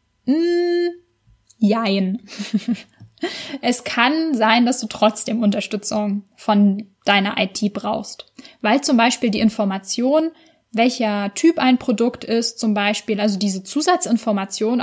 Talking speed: 115 wpm